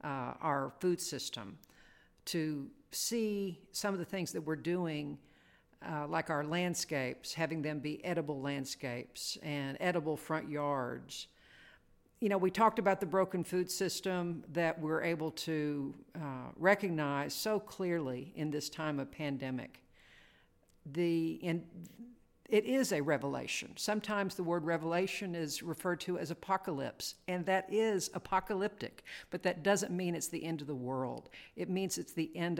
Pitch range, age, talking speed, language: 150-180 Hz, 50-69, 155 wpm, English